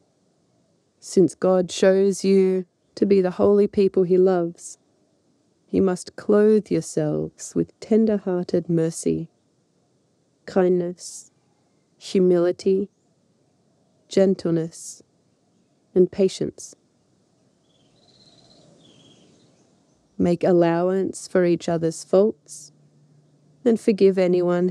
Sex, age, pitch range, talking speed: female, 30-49, 160-195 Hz, 80 wpm